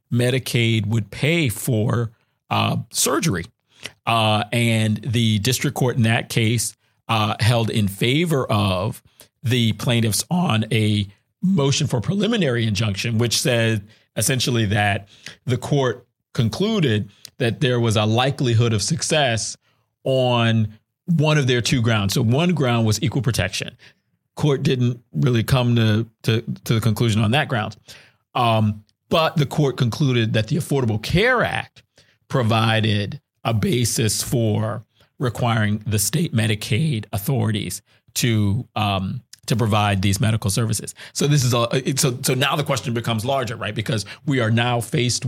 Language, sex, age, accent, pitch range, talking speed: English, male, 40-59, American, 110-130 Hz, 145 wpm